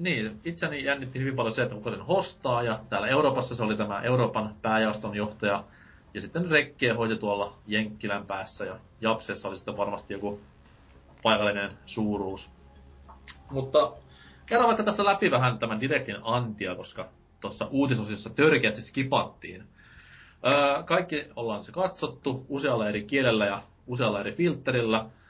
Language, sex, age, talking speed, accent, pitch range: Finnish, male, 30-49, 135 wpm, native, 105-135 Hz